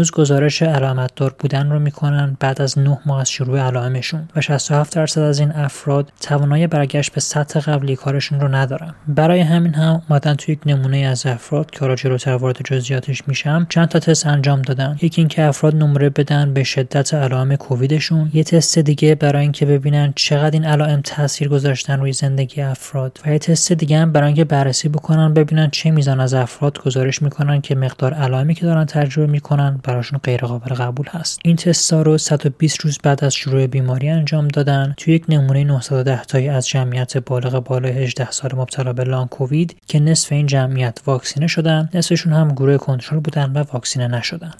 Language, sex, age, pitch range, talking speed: Persian, male, 20-39, 135-155 Hz, 170 wpm